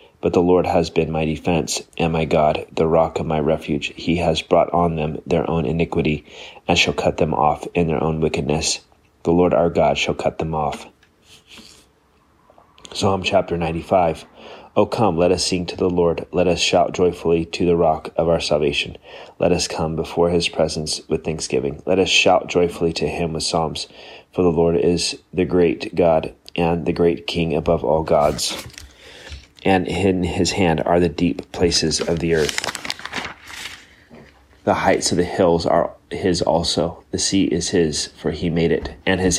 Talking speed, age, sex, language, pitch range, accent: 185 wpm, 30-49, male, English, 80-85 Hz, American